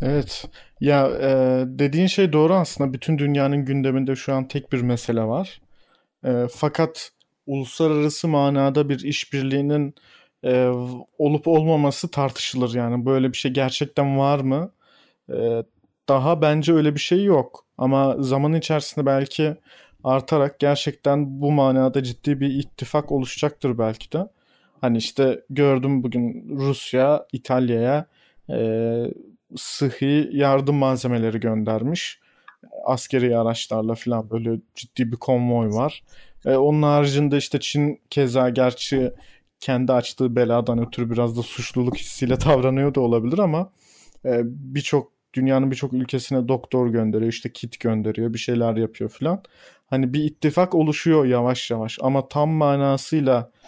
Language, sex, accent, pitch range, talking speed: Turkish, male, native, 125-145 Hz, 130 wpm